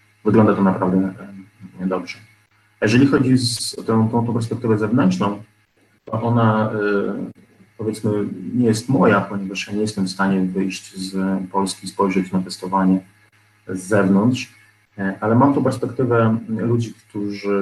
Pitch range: 100-110 Hz